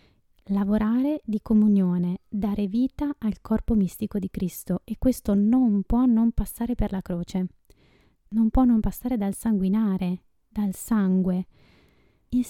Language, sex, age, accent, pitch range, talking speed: Italian, female, 20-39, native, 190-235 Hz, 135 wpm